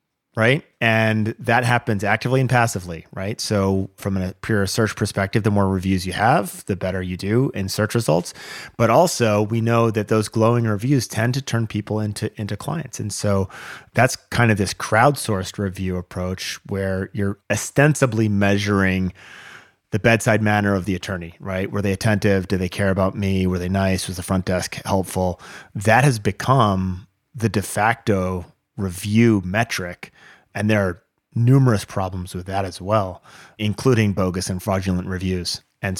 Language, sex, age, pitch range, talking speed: English, male, 30-49, 95-115 Hz, 165 wpm